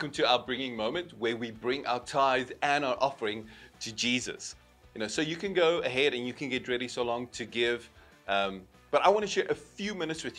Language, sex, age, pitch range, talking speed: English, male, 30-49, 125-165 Hz, 235 wpm